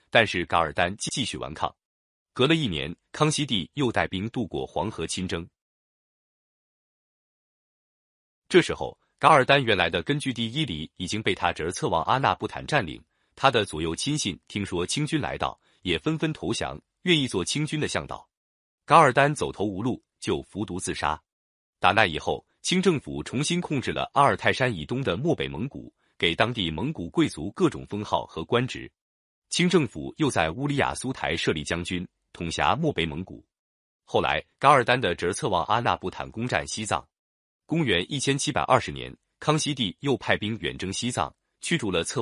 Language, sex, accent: Chinese, male, native